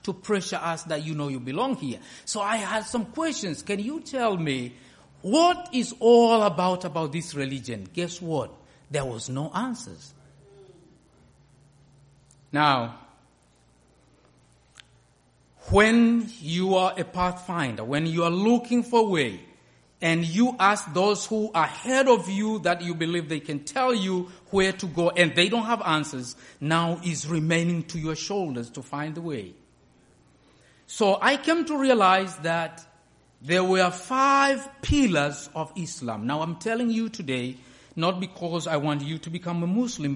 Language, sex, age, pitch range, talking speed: English, male, 50-69, 140-205 Hz, 155 wpm